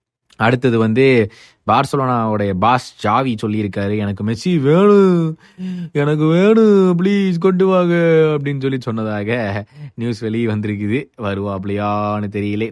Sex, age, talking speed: male, 20-39, 105 wpm